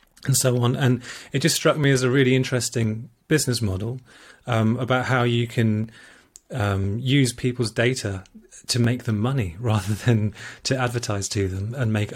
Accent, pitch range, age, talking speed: British, 115-130 Hz, 30-49, 175 wpm